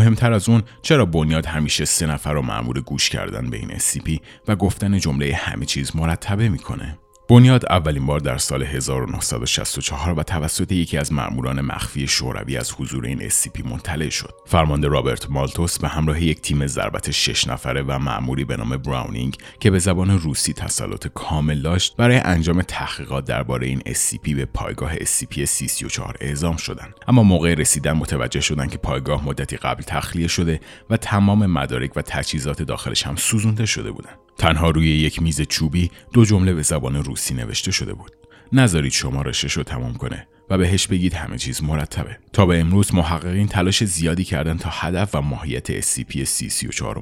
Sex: male